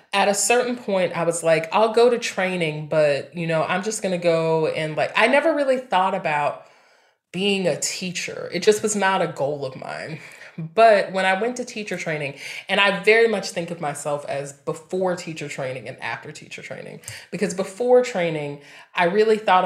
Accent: American